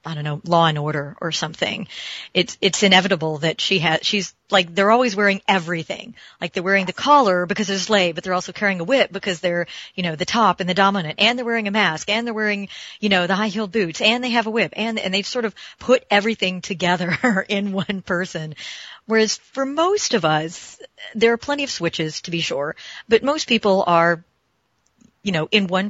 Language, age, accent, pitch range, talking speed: English, 40-59, American, 160-205 Hz, 220 wpm